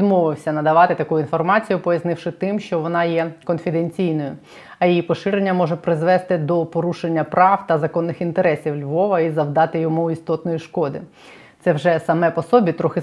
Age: 20-39